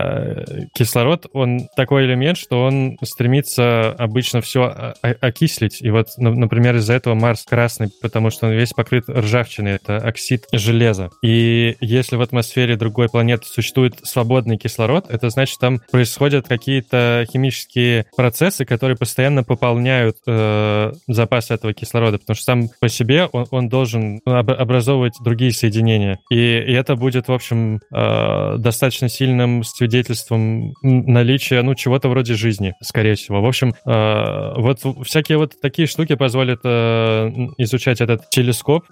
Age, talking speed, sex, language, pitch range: 20-39, 145 wpm, male, Russian, 115-130 Hz